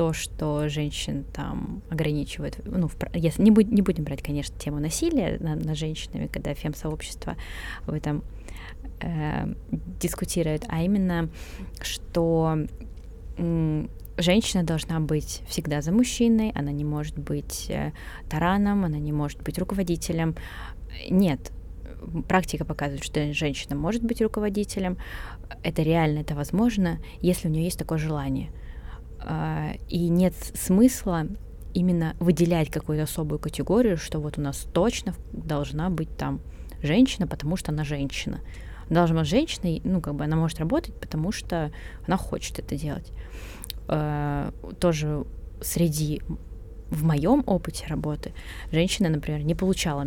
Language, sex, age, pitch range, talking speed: Russian, female, 20-39, 145-175 Hz, 130 wpm